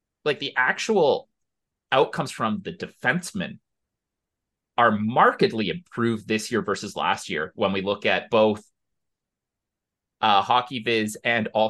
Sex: male